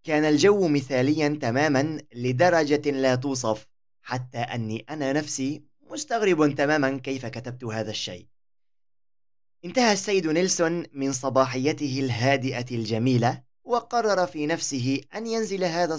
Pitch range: 120-170 Hz